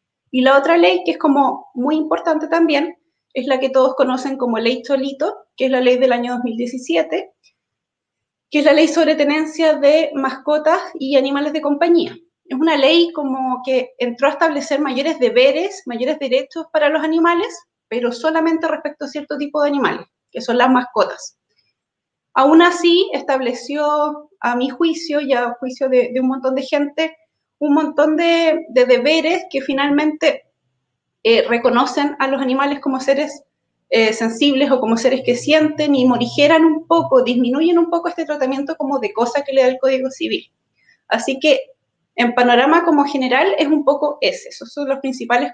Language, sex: Spanish, female